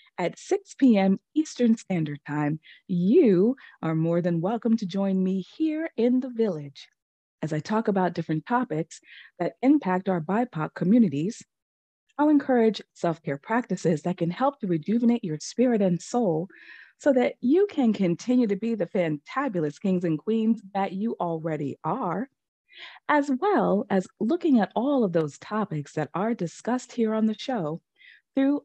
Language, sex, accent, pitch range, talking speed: English, female, American, 165-250 Hz, 155 wpm